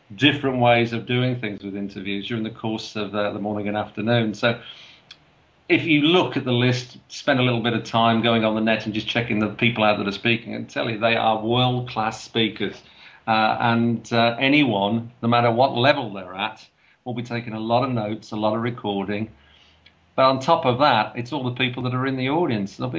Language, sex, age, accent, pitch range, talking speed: English, male, 50-69, British, 105-120 Hz, 220 wpm